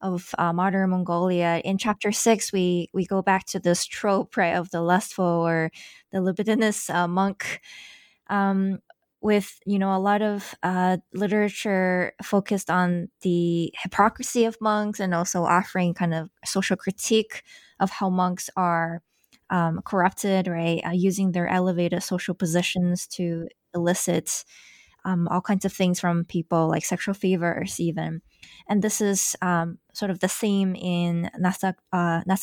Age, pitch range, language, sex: 20-39, 175-200 Hz, English, female